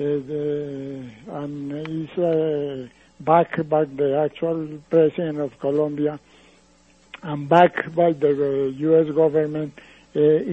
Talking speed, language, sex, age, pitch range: 115 wpm, English, male, 60-79, 155-185 Hz